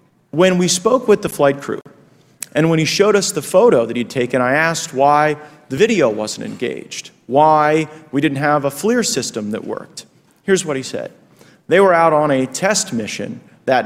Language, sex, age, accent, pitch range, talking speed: English, male, 40-59, American, 130-165 Hz, 195 wpm